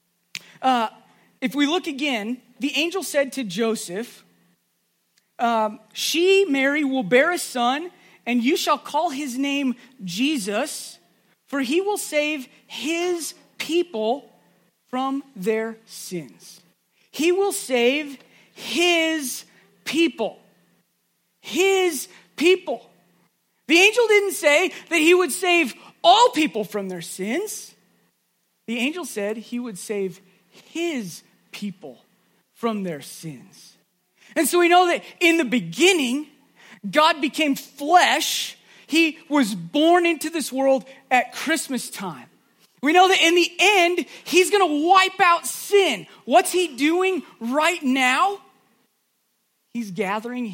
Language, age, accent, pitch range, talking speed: English, 40-59, American, 225-330 Hz, 120 wpm